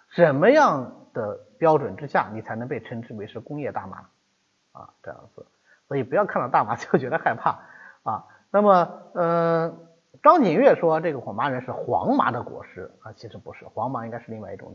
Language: Chinese